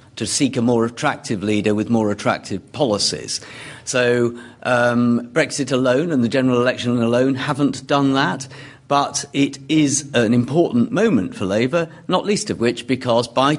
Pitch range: 110-135 Hz